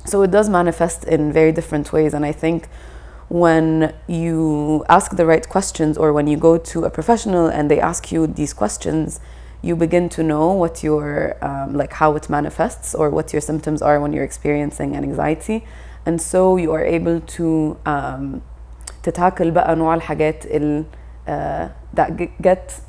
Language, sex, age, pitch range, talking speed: Arabic, female, 20-39, 145-165 Hz, 170 wpm